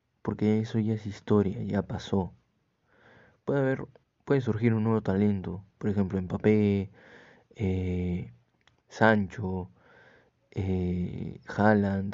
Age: 20-39